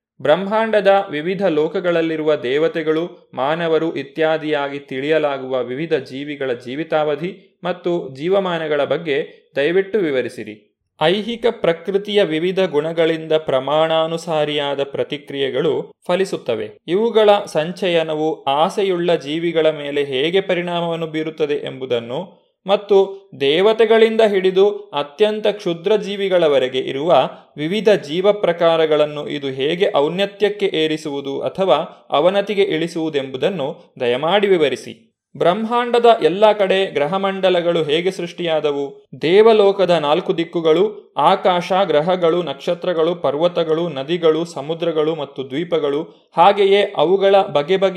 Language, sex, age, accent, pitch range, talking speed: Kannada, male, 20-39, native, 155-195 Hz, 90 wpm